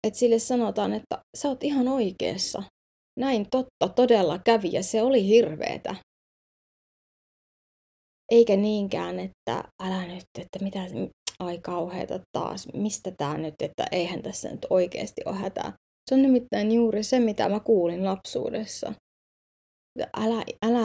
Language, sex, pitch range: Finnish, female, 185-220 Hz